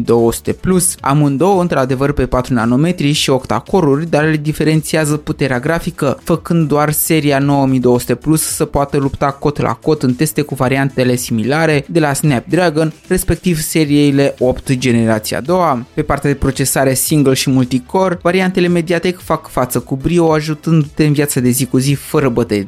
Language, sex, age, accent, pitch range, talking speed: Romanian, male, 20-39, native, 130-165 Hz, 160 wpm